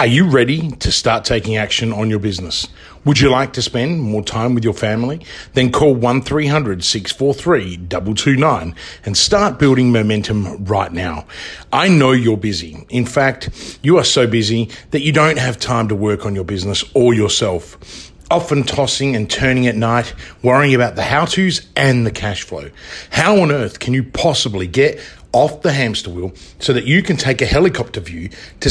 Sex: male